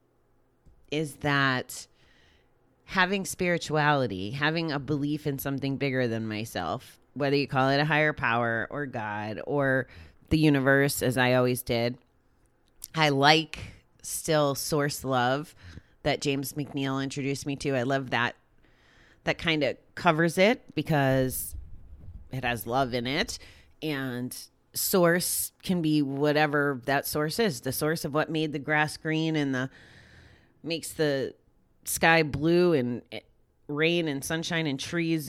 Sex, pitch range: female, 125-155 Hz